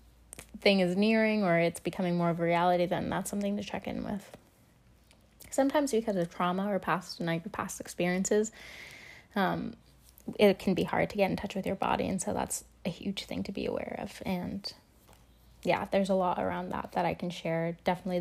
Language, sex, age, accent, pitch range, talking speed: English, female, 10-29, American, 180-205 Hz, 200 wpm